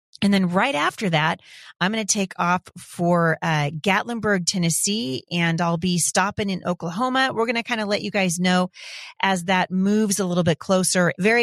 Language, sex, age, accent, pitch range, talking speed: English, female, 30-49, American, 165-200 Hz, 195 wpm